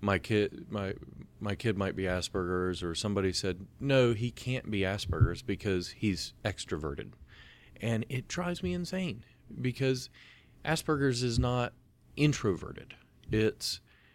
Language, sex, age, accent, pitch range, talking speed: English, male, 40-59, American, 90-110 Hz, 120 wpm